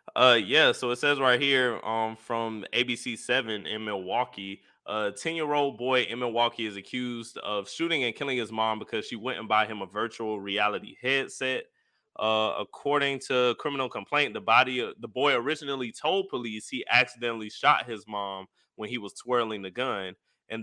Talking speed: 170 wpm